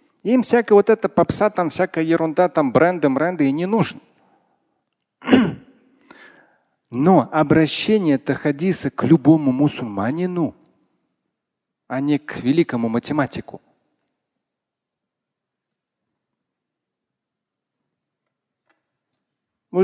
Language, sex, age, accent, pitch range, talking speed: Russian, male, 40-59, native, 130-185 Hz, 85 wpm